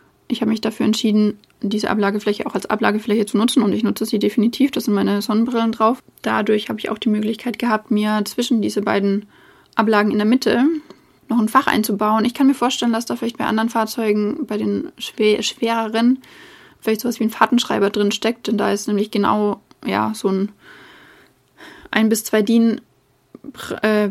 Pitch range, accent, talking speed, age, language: 205-240 Hz, German, 185 wpm, 20-39, English